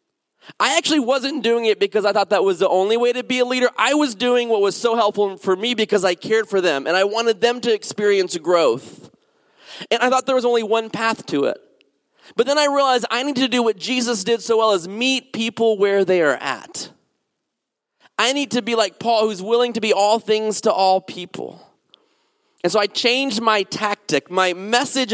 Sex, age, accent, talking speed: male, 30-49, American, 215 wpm